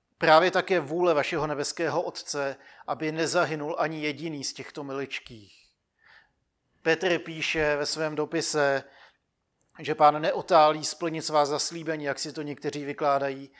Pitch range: 135-155 Hz